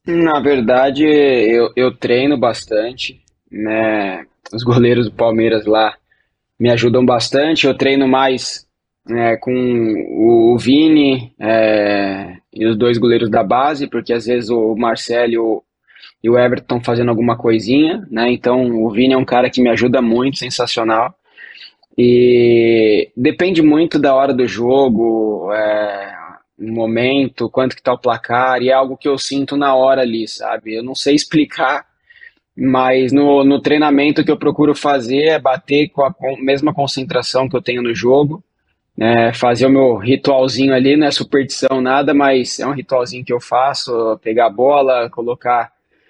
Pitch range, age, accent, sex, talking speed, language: 115-135 Hz, 20-39, Brazilian, male, 160 wpm, Portuguese